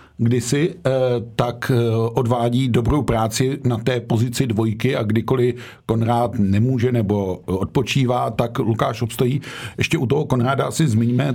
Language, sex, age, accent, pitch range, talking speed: Czech, male, 50-69, native, 110-125 Hz, 125 wpm